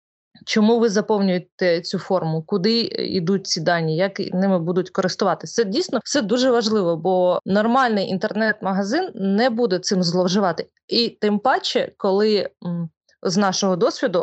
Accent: native